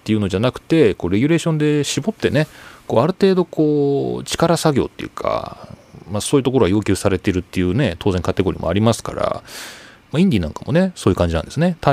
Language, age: Japanese, 40-59